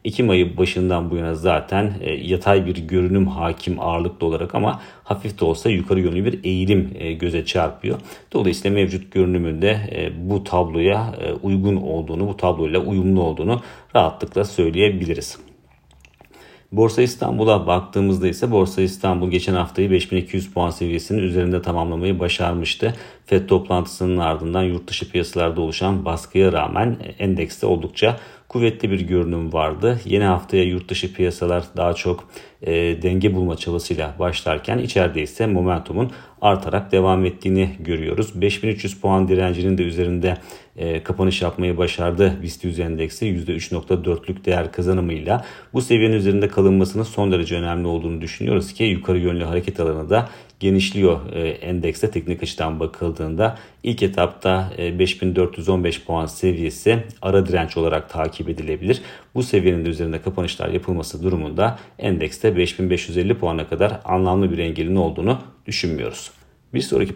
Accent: native